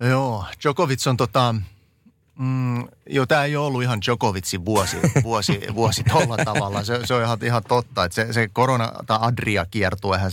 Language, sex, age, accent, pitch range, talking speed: Finnish, male, 30-49, native, 100-120 Hz, 145 wpm